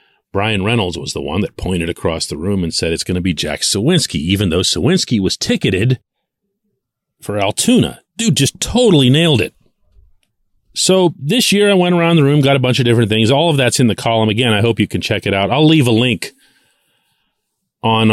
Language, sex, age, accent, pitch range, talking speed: English, male, 40-59, American, 100-130 Hz, 210 wpm